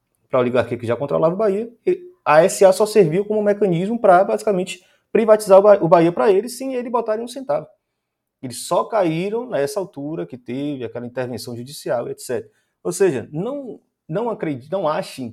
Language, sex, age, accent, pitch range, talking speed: Portuguese, male, 30-49, Brazilian, 120-190 Hz, 170 wpm